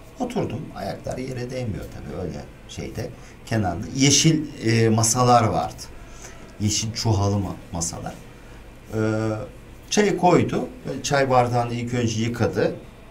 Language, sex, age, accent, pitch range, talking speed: Turkish, male, 50-69, native, 100-145 Hz, 95 wpm